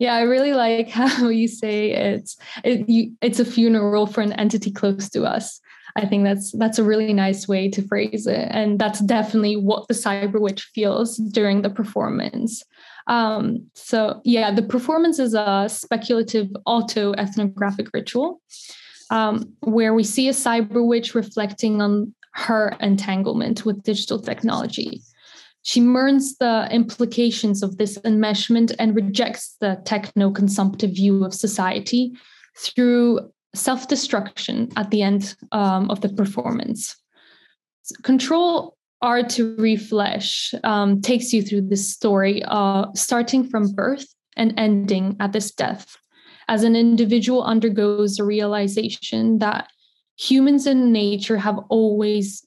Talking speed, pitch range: 135 wpm, 205-235 Hz